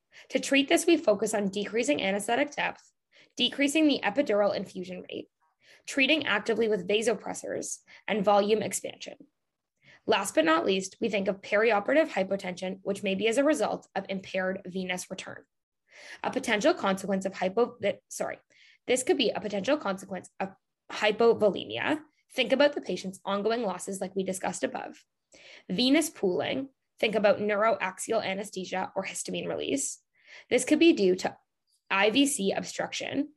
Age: 10-29